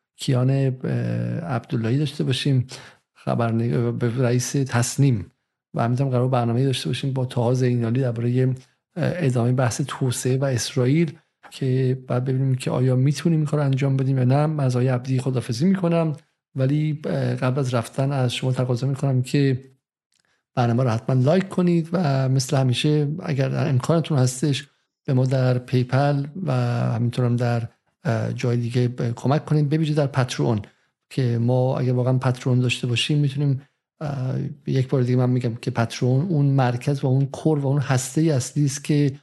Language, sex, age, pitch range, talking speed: Persian, male, 50-69, 125-145 Hz, 150 wpm